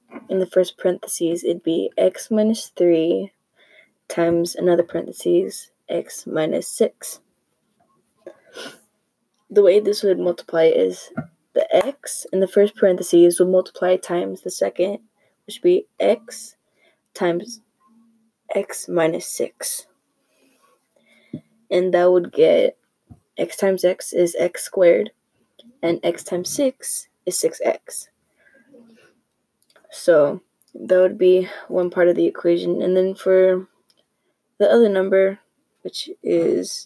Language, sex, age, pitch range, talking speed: English, female, 20-39, 175-230 Hz, 120 wpm